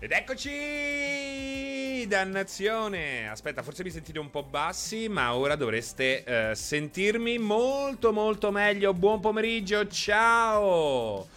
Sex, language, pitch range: male, Italian, 160-215 Hz